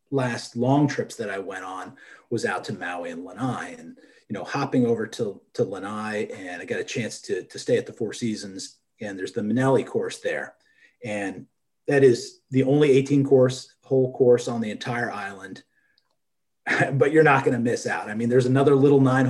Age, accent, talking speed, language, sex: 30-49, American, 200 wpm, English, male